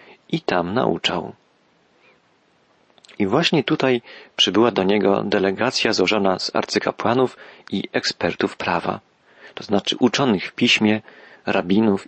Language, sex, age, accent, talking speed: Polish, male, 40-59, native, 110 wpm